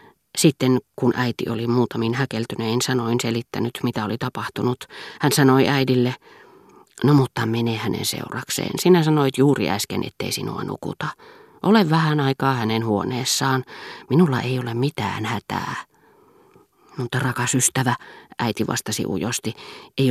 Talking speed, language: 130 wpm, Finnish